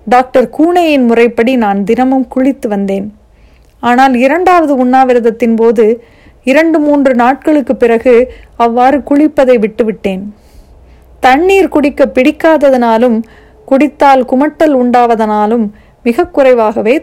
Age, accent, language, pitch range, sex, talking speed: 30-49, native, Tamil, 220-275 Hz, female, 90 wpm